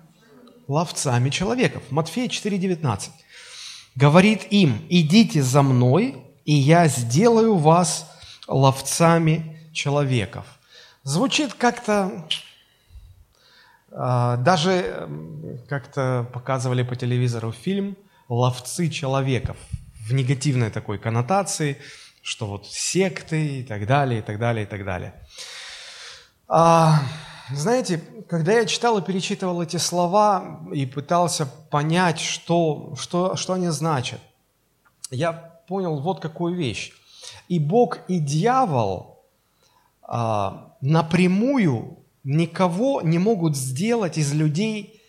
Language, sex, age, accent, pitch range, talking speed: Russian, male, 20-39, native, 130-185 Hz, 95 wpm